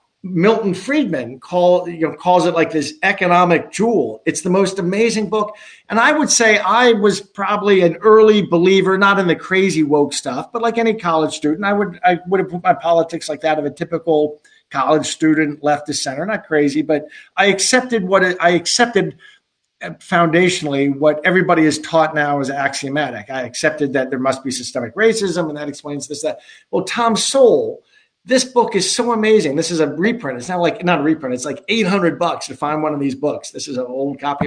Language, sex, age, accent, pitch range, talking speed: English, male, 50-69, American, 155-205 Hz, 205 wpm